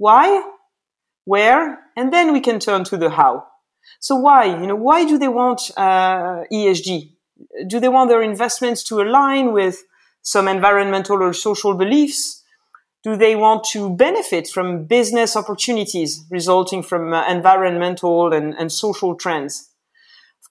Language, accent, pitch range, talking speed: English, French, 175-240 Hz, 145 wpm